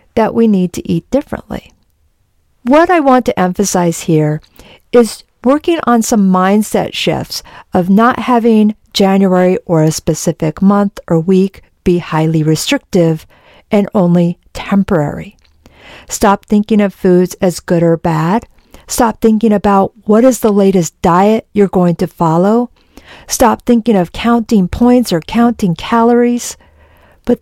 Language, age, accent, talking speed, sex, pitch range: English, 50-69, American, 140 wpm, female, 180-230 Hz